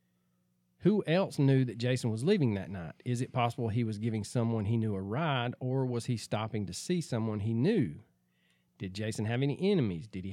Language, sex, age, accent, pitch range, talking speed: English, male, 40-59, American, 100-130 Hz, 210 wpm